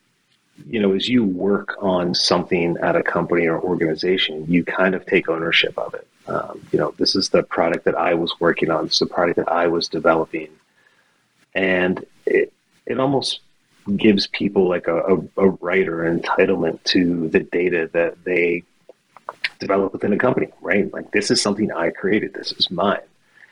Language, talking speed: English, 175 wpm